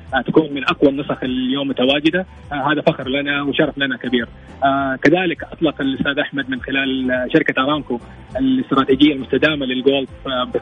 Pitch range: 130-150 Hz